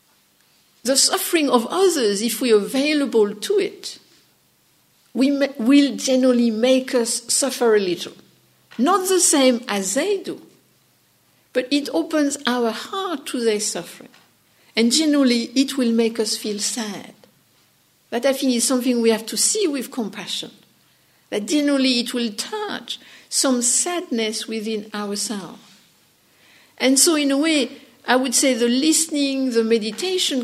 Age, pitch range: 60-79, 220-275 Hz